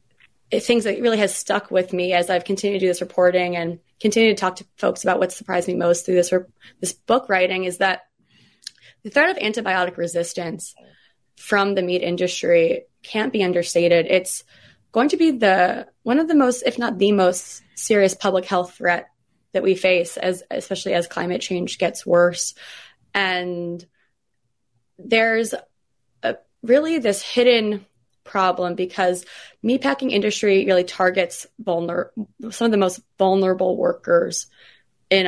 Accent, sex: American, female